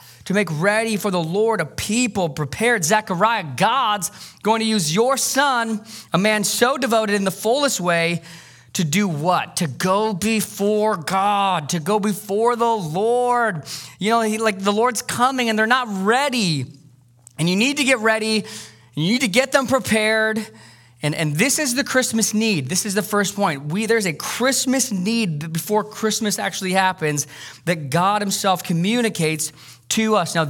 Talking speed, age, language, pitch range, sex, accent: 170 wpm, 20-39, English, 150-215 Hz, male, American